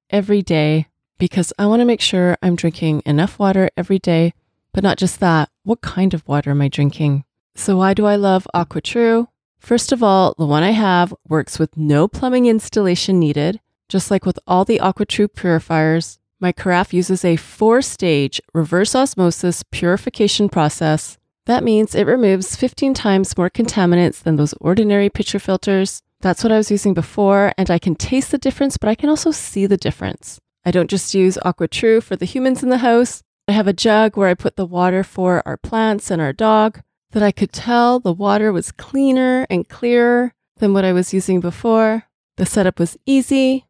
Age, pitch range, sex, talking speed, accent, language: 30-49, 175-225 Hz, female, 190 wpm, American, English